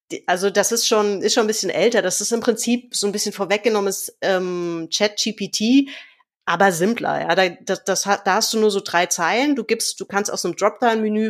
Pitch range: 190-250 Hz